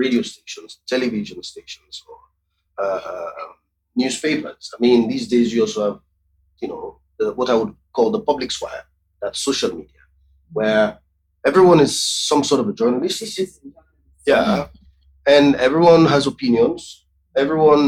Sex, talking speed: male, 140 wpm